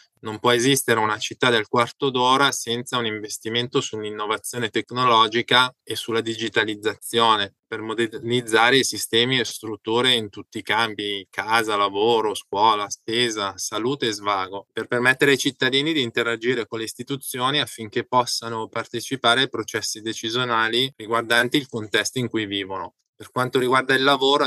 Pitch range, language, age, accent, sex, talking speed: 110-125 Hz, German, 20-39, Italian, male, 145 wpm